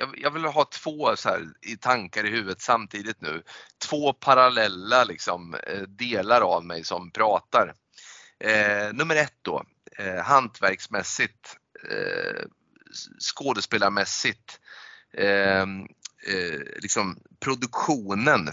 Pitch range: 100-130 Hz